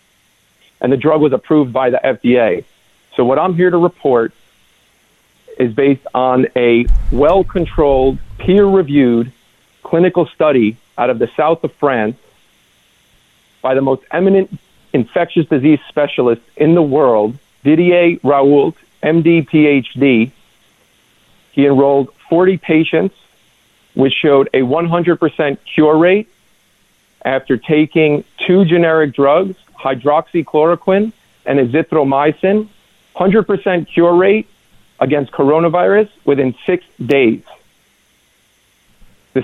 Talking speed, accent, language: 105 wpm, American, English